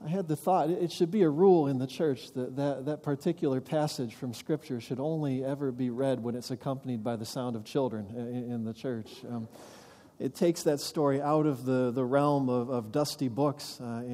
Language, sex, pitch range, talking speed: English, male, 125-175 Hz, 215 wpm